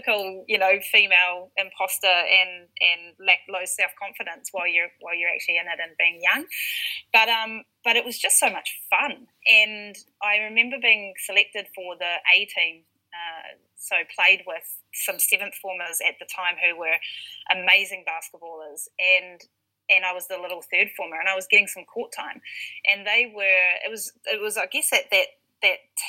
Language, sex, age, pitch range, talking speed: English, female, 20-39, 180-210 Hz, 180 wpm